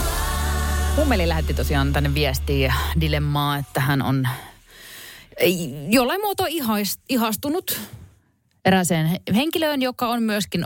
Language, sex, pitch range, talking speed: Finnish, female, 125-190 Hz, 100 wpm